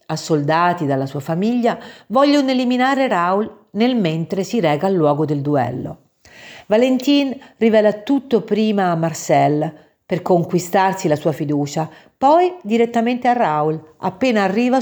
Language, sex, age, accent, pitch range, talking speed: Italian, female, 50-69, native, 155-215 Hz, 130 wpm